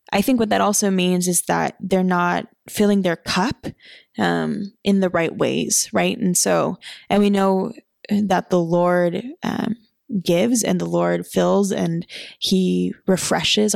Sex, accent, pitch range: female, American, 175-215 Hz